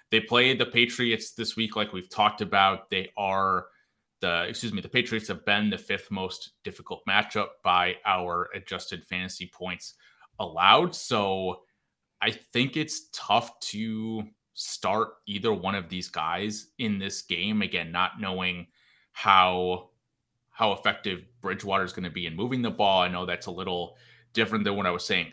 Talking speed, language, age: 170 wpm, English, 30-49